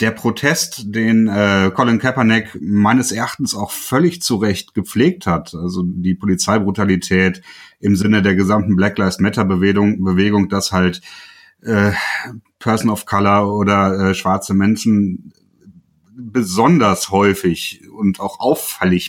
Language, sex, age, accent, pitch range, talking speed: German, male, 30-49, German, 95-110 Hz, 125 wpm